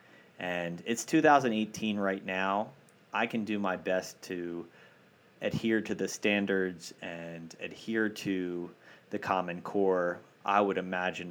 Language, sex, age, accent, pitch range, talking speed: English, male, 30-49, American, 90-105 Hz, 125 wpm